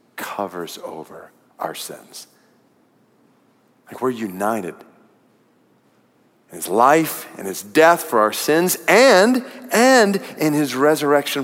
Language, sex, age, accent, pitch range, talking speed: English, male, 40-59, American, 135-185 Hz, 110 wpm